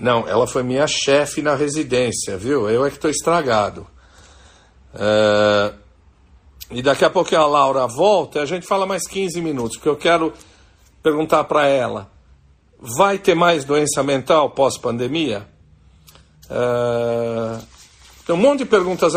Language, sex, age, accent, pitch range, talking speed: Portuguese, male, 50-69, Brazilian, 105-160 Hz, 145 wpm